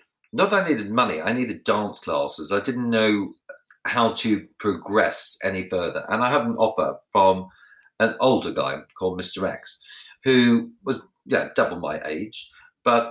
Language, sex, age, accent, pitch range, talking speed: English, male, 40-59, British, 100-120 Hz, 165 wpm